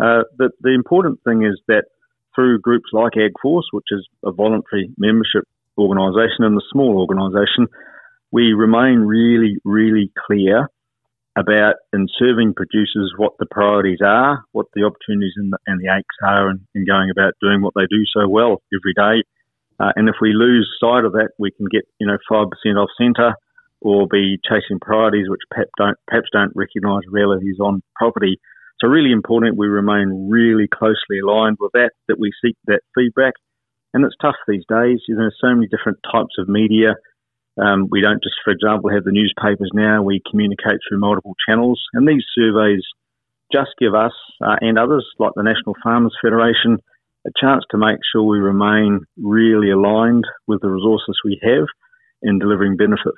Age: 40-59